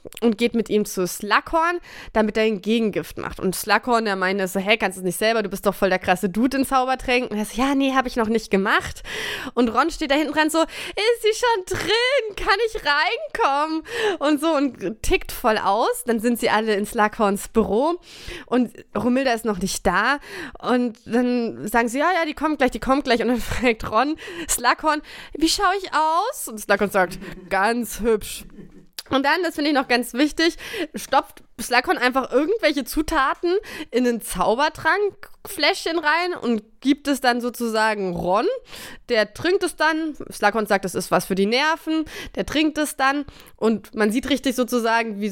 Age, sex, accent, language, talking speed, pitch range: 20-39, female, German, German, 195 wpm, 215-310 Hz